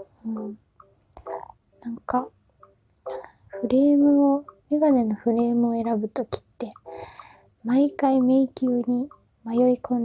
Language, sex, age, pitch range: Japanese, female, 20-39, 215-260 Hz